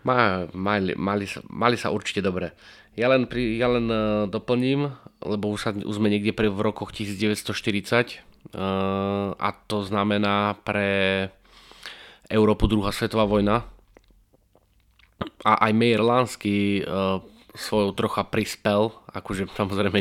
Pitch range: 100-110 Hz